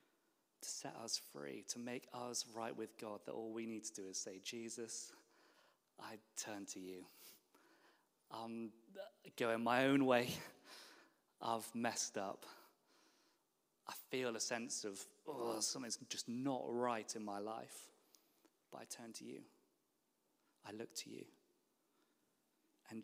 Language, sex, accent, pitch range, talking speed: English, male, British, 115-140 Hz, 140 wpm